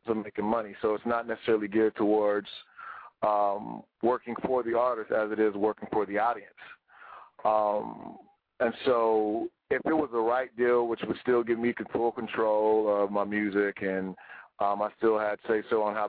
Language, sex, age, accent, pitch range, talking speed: English, male, 40-59, American, 105-115 Hz, 190 wpm